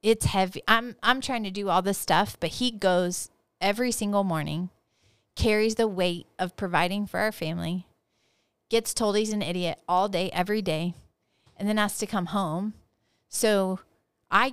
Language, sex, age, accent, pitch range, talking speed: English, female, 30-49, American, 175-220 Hz, 170 wpm